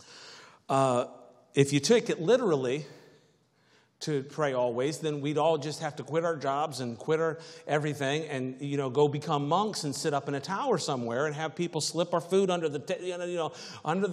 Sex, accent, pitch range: male, American, 135-175 Hz